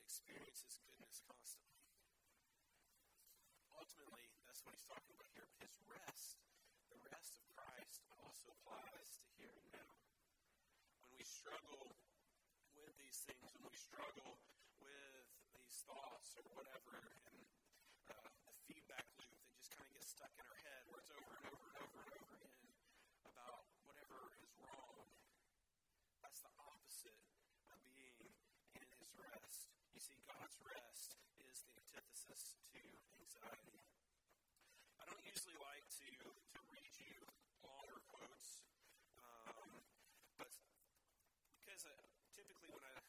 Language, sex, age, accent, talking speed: English, male, 40-59, American, 140 wpm